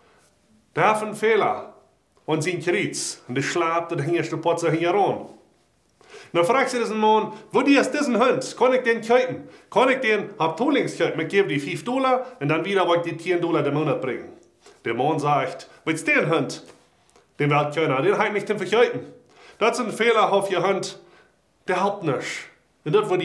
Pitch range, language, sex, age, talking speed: 150-230 Hz, German, male, 30-49, 205 wpm